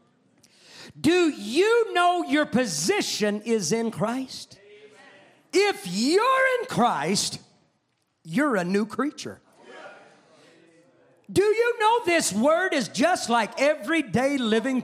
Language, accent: English, American